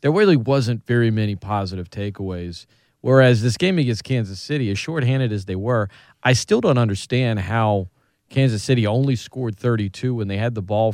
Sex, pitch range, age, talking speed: male, 105-135 Hz, 40-59, 180 wpm